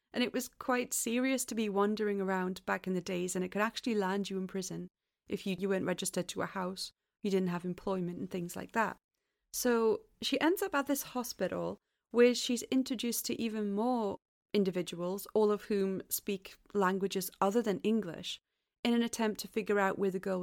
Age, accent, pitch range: 30-49, British, 195-245 Hz